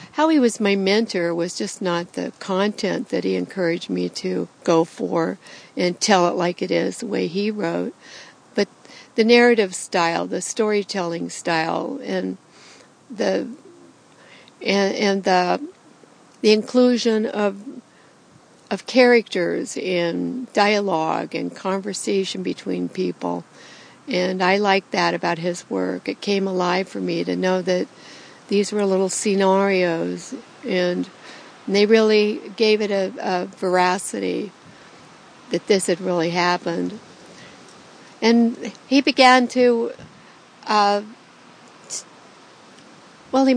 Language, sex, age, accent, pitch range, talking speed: English, female, 60-79, American, 175-220 Hz, 125 wpm